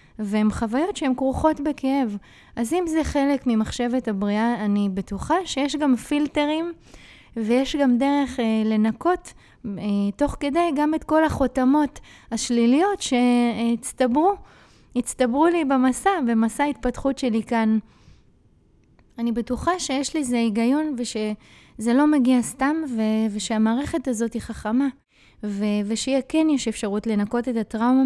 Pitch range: 220-280 Hz